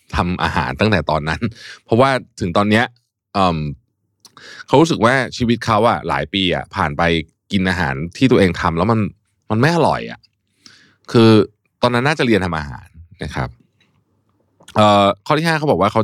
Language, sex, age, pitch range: Thai, male, 20-39, 85-120 Hz